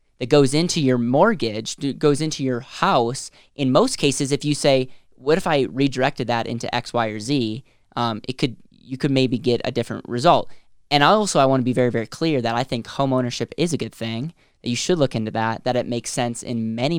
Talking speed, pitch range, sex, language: 215 wpm, 120-140 Hz, male, English